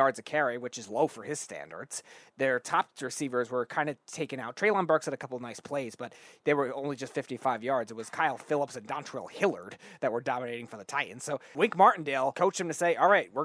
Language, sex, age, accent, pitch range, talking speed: English, male, 20-39, American, 130-160 Hz, 240 wpm